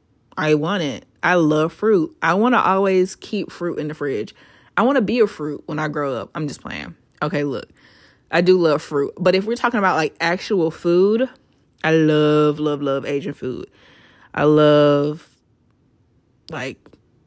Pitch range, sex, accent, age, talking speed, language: 150-200 Hz, female, American, 20-39, 175 wpm, English